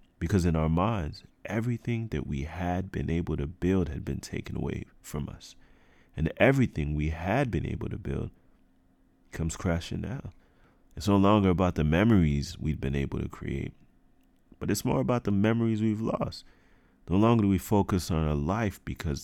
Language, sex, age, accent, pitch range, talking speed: English, male, 30-49, American, 75-100 Hz, 180 wpm